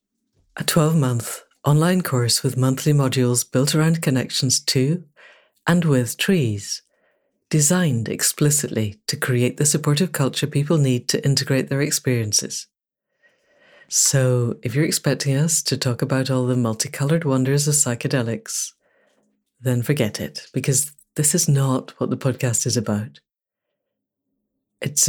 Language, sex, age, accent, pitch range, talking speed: English, female, 60-79, British, 125-150 Hz, 130 wpm